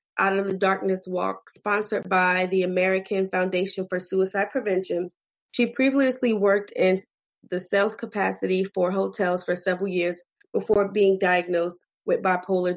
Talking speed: 140 wpm